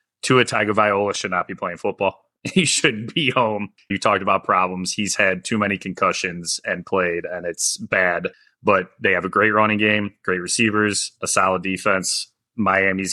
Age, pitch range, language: 30-49, 95-105 Hz, English